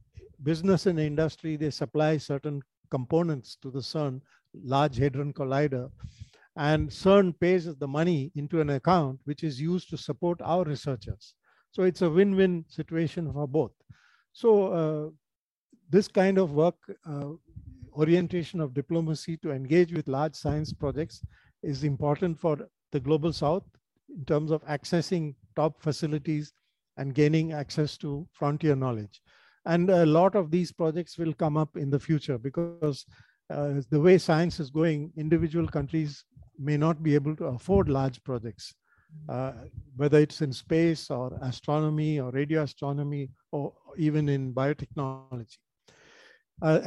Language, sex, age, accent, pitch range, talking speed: English, male, 50-69, Indian, 140-165 Hz, 145 wpm